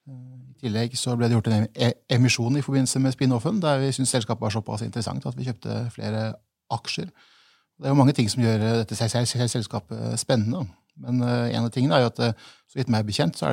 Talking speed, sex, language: 210 wpm, male, English